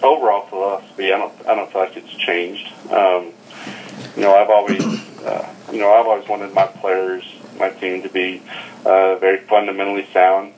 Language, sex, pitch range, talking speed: English, male, 90-100 Hz, 175 wpm